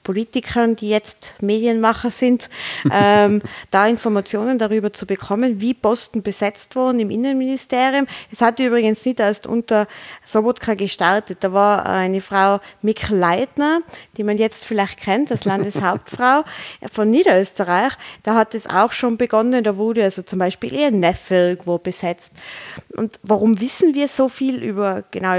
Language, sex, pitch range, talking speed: German, female, 195-235 Hz, 150 wpm